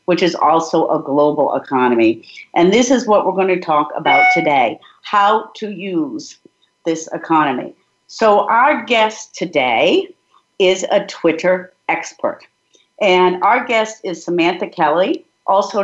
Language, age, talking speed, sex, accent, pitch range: English, 50-69, 135 wpm, female, American, 180-270 Hz